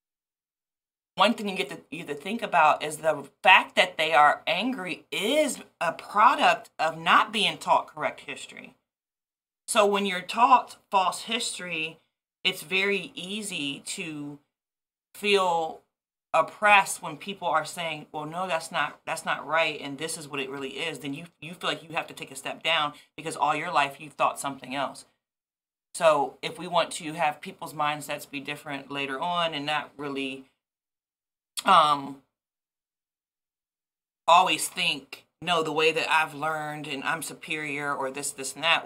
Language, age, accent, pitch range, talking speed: English, 30-49, American, 140-165 Hz, 165 wpm